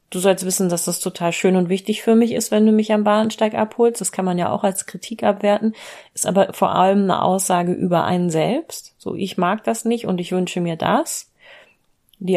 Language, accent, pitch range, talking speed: German, German, 175-210 Hz, 225 wpm